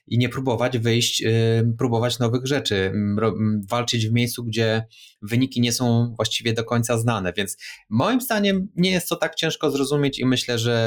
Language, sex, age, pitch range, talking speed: Polish, male, 20-39, 105-125 Hz, 165 wpm